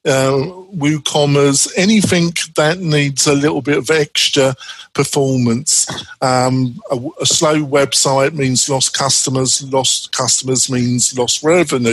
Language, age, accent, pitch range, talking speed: English, 50-69, British, 135-150 Hz, 120 wpm